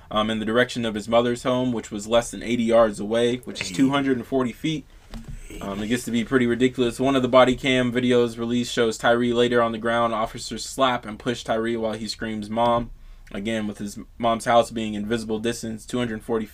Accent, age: American, 20-39